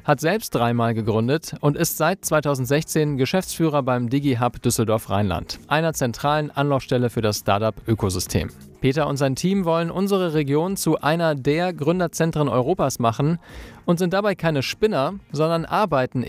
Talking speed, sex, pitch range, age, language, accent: 140 wpm, male, 125-165 Hz, 40-59, German, German